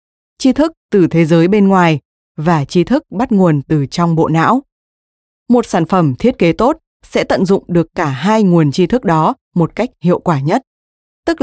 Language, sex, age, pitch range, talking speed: Vietnamese, female, 20-39, 165-220 Hz, 200 wpm